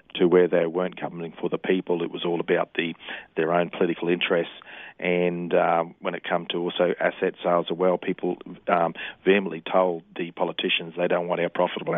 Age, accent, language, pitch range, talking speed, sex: 40-59, Australian, English, 85-95 Hz, 195 wpm, male